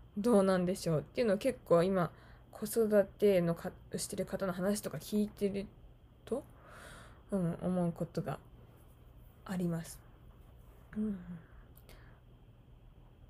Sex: female